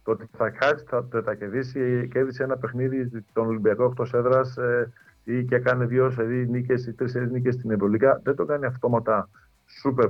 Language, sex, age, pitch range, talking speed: Greek, male, 50-69, 115-130 Hz, 135 wpm